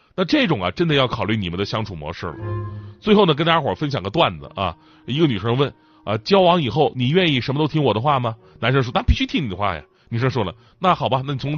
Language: Chinese